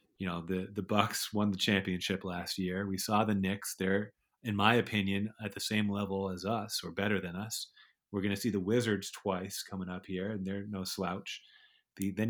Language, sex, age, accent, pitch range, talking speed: English, male, 30-49, American, 95-110 Hz, 215 wpm